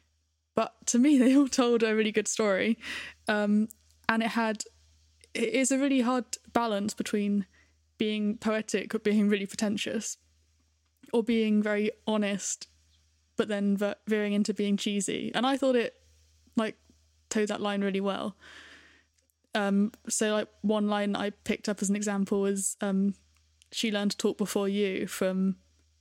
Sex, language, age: female, English, 20-39